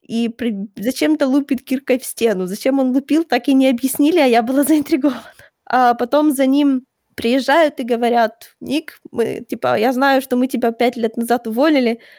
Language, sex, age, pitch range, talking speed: Ukrainian, female, 20-39, 230-270 Hz, 180 wpm